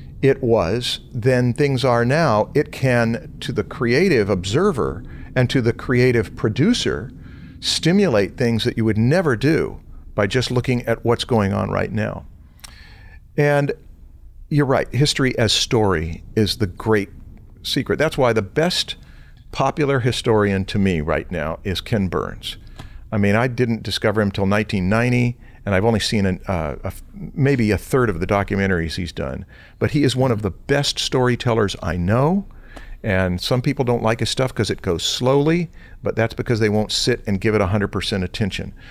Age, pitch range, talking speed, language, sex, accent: 50-69, 95-125 Hz, 170 wpm, English, male, American